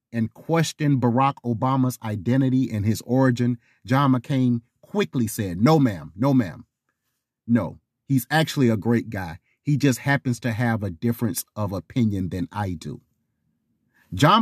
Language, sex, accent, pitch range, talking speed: English, male, American, 115-155 Hz, 145 wpm